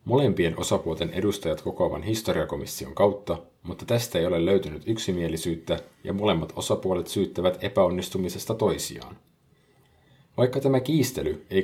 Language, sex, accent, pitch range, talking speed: Finnish, male, native, 80-105 Hz, 115 wpm